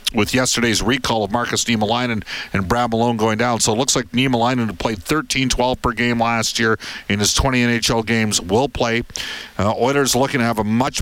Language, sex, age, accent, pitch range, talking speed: English, male, 50-69, American, 105-125 Hz, 200 wpm